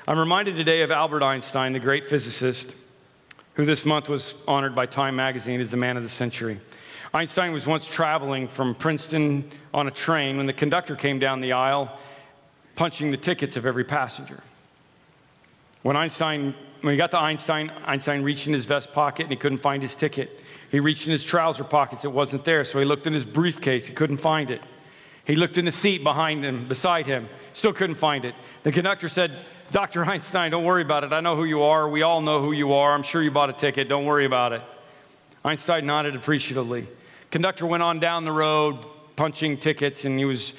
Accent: American